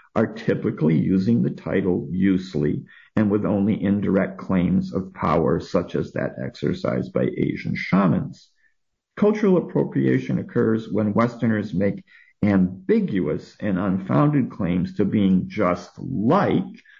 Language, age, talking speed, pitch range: English, 50-69, 120 wpm, 95-125 Hz